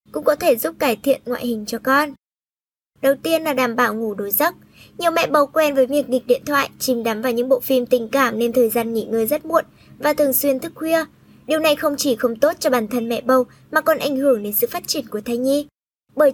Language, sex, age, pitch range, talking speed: Vietnamese, male, 10-29, 240-300 Hz, 255 wpm